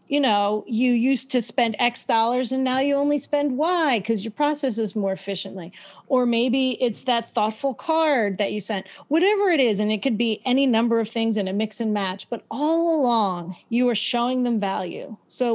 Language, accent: English, American